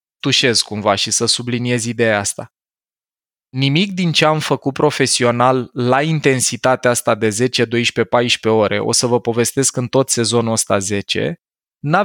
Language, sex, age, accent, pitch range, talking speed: Romanian, male, 20-39, native, 120-150 Hz, 150 wpm